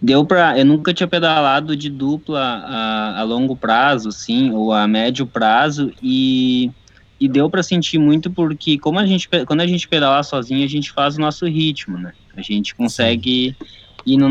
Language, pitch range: Portuguese, 130-165 Hz